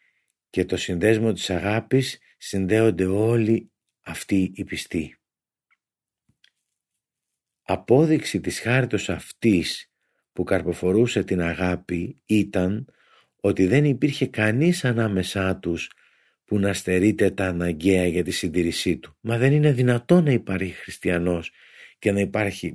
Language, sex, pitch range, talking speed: Greek, male, 90-115 Hz, 115 wpm